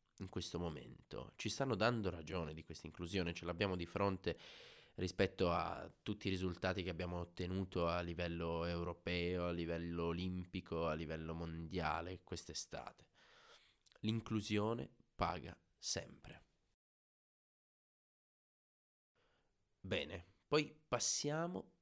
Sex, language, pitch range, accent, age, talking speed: male, Italian, 85-110 Hz, native, 20-39, 100 wpm